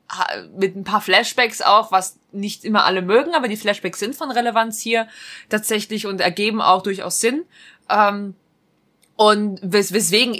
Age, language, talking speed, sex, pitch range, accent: 20-39, German, 155 wpm, female, 190-235 Hz, German